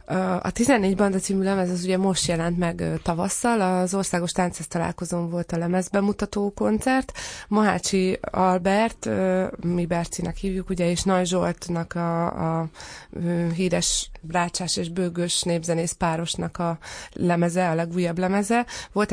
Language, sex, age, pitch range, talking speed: Hungarian, female, 20-39, 175-195 Hz, 130 wpm